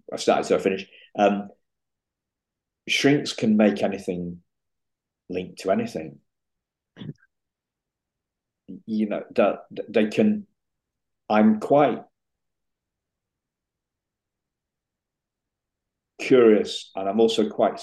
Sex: male